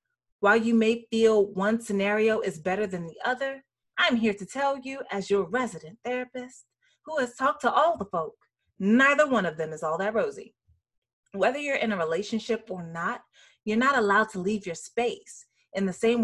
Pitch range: 190-255 Hz